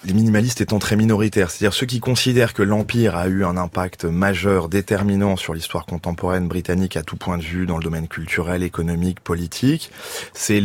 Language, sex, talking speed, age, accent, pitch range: French, male, 185 wpm, 20-39, French, 90-110 Hz